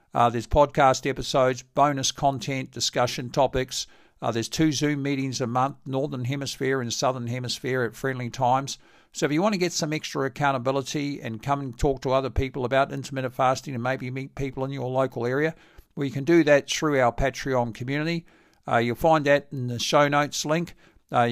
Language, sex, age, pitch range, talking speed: English, male, 60-79, 130-160 Hz, 195 wpm